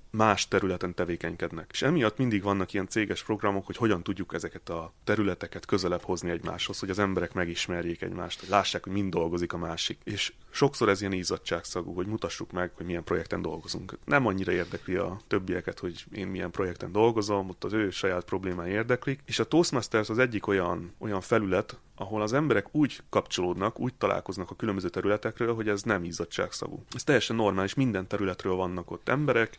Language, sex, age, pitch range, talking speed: Hungarian, male, 30-49, 90-110 Hz, 180 wpm